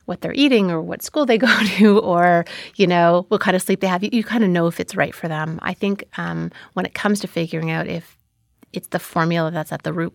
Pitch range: 175-205 Hz